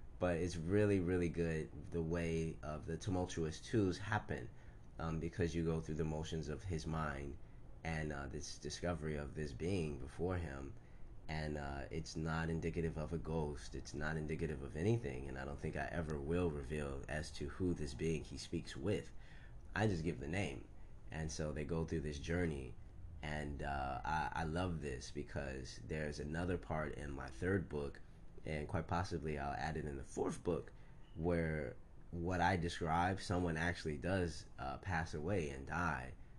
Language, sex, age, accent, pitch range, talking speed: English, male, 20-39, American, 75-85 Hz, 180 wpm